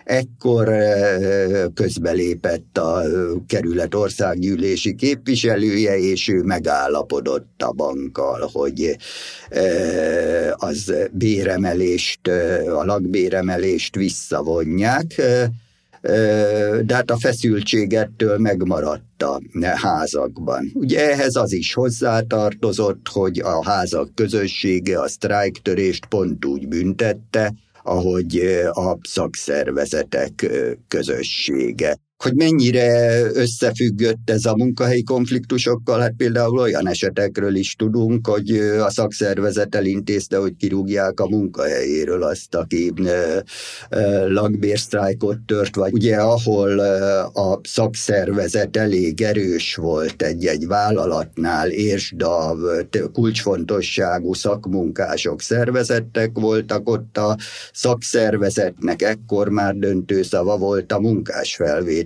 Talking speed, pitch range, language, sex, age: 90 wpm, 100-115 Hz, Hungarian, male, 50-69